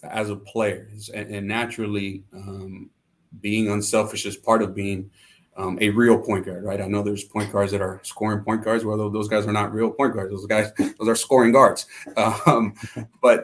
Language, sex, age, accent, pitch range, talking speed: English, male, 30-49, American, 105-115 Hz, 200 wpm